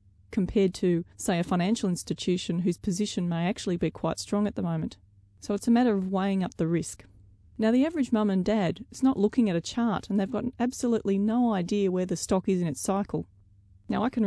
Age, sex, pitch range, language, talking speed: 30-49, female, 175-215 Hz, English, 225 wpm